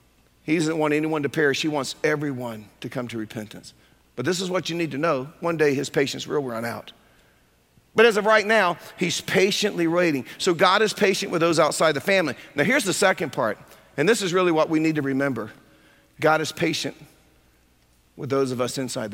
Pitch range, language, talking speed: 140-200 Hz, English, 210 wpm